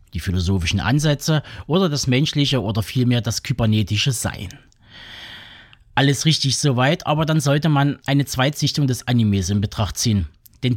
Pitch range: 115-150 Hz